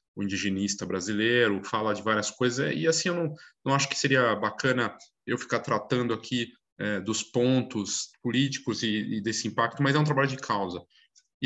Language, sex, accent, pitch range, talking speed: Portuguese, male, Brazilian, 105-140 Hz, 185 wpm